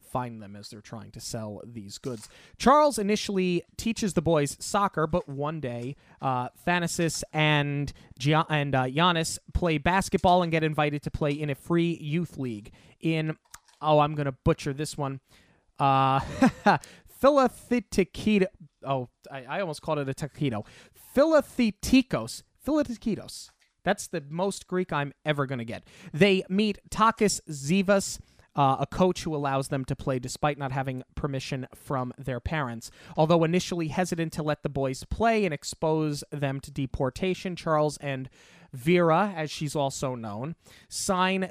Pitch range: 135-175 Hz